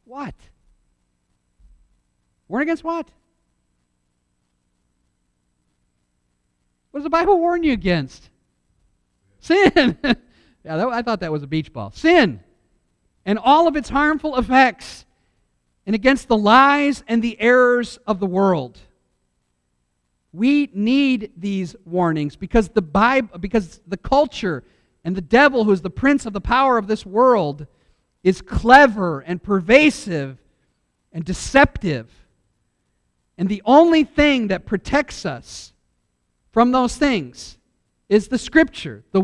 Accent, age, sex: American, 50-69, male